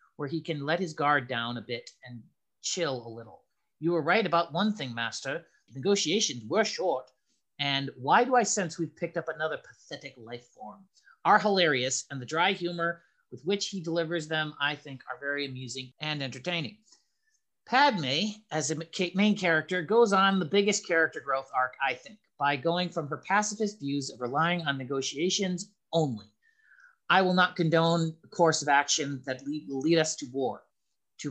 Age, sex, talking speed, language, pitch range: 40-59, male, 180 wpm, English, 135-180 Hz